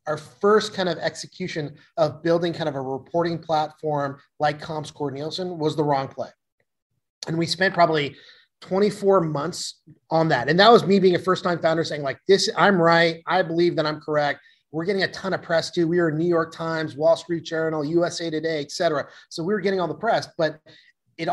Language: English